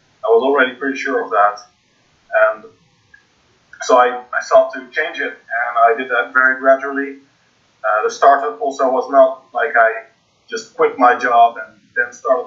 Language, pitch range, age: English, 120-190 Hz, 30-49